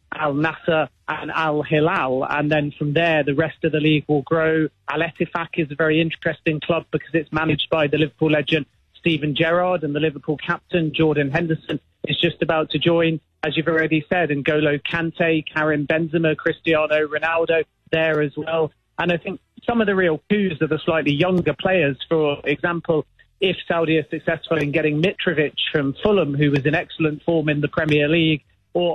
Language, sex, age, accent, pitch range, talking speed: English, male, 30-49, British, 150-170 Hz, 185 wpm